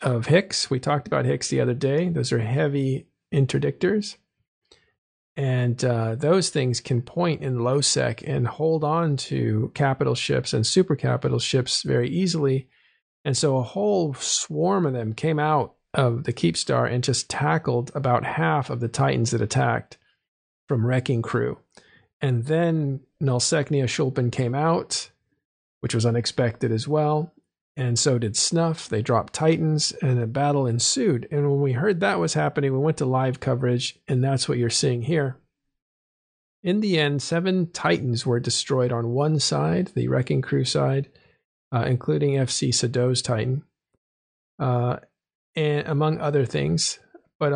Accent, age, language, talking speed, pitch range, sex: American, 50-69, English, 155 wpm, 120-150 Hz, male